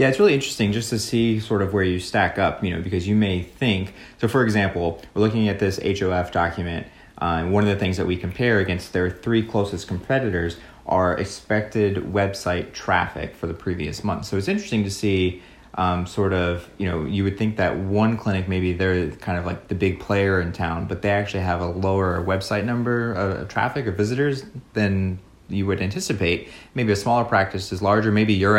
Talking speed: 210 wpm